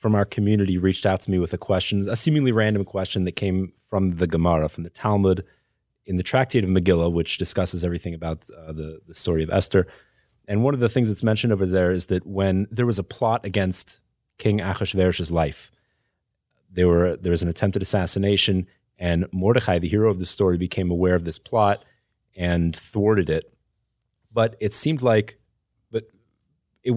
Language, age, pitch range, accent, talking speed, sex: English, 30-49, 90-110 Hz, American, 190 wpm, male